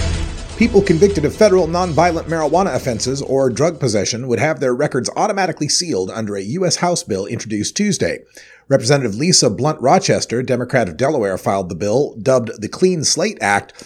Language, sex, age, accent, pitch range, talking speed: English, male, 30-49, American, 105-155 Hz, 165 wpm